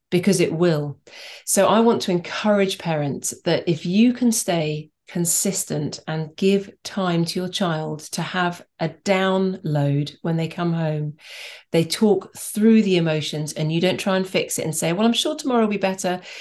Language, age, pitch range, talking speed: English, 40-59, 160-195 Hz, 185 wpm